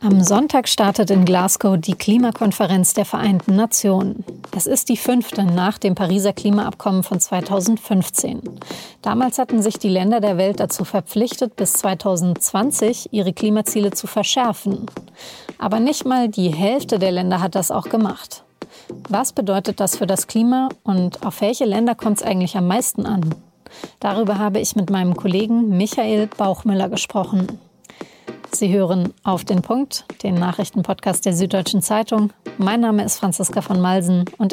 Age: 30-49